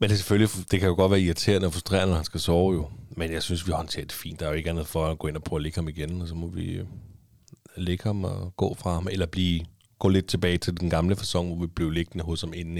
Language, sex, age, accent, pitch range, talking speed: Danish, male, 30-49, native, 85-110 Hz, 305 wpm